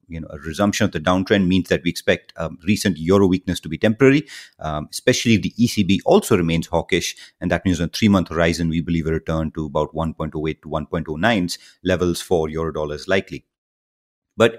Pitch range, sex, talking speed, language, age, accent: 85-105 Hz, male, 200 wpm, English, 30-49, Indian